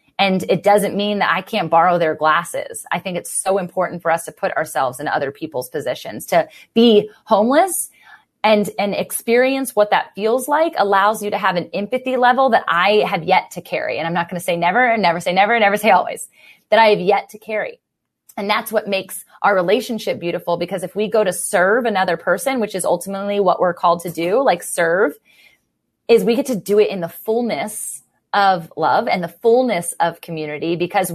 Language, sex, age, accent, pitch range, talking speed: English, female, 30-49, American, 175-210 Hz, 210 wpm